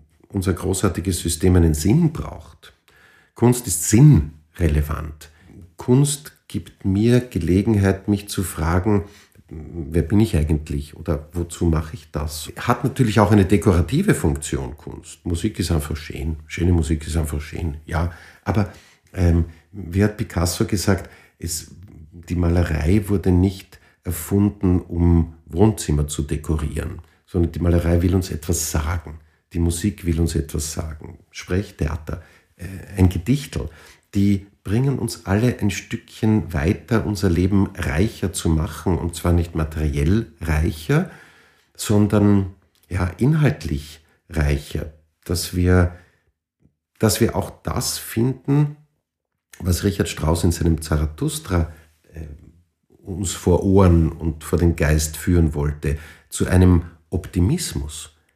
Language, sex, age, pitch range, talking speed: German, male, 50-69, 80-100 Hz, 125 wpm